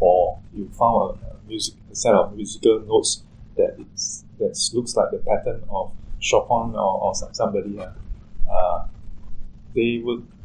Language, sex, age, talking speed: English, male, 20-39, 150 wpm